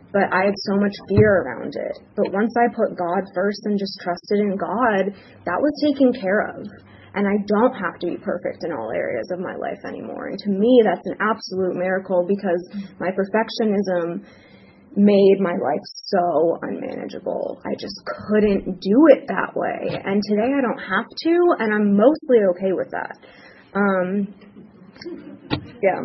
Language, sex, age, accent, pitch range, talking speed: English, female, 20-39, American, 180-225 Hz, 170 wpm